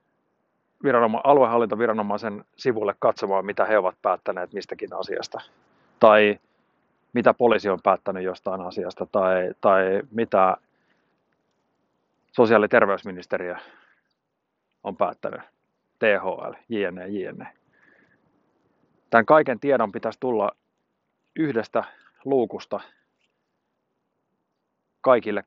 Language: Finnish